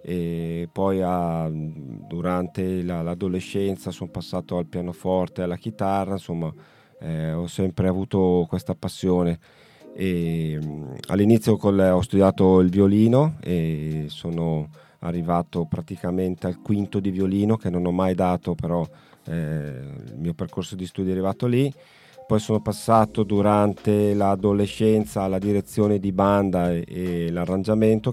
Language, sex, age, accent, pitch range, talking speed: Italian, male, 30-49, native, 85-105 Hz, 130 wpm